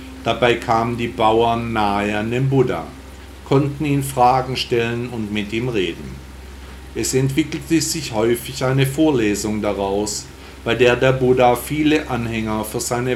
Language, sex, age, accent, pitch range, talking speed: German, male, 50-69, German, 95-130 Hz, 140 wpm